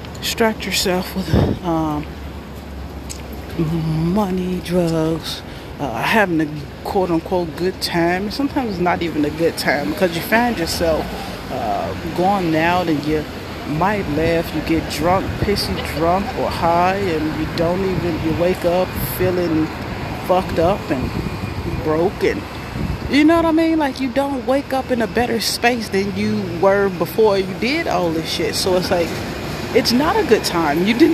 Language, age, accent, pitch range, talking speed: English, 30-49, American, 160-210 Hz, 160 wpm